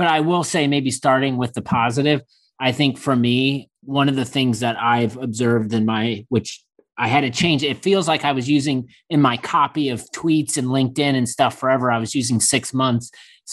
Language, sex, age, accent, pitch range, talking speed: English, male, 30-49, American, 115-140 Hz, 215 wpm